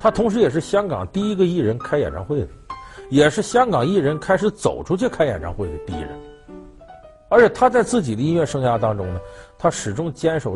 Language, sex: Chinese, male